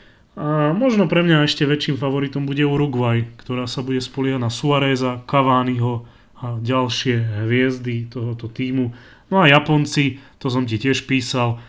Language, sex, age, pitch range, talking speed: Slovak, male, 30-49, 120-135 Hz, 150 wpm